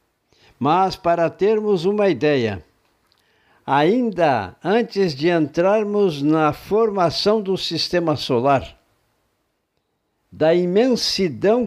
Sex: male